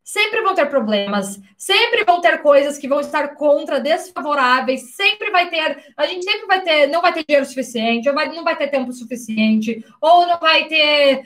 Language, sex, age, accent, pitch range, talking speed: Portuguese, female, 20-39, Brazilian, 275-355 Hz, 185 wpm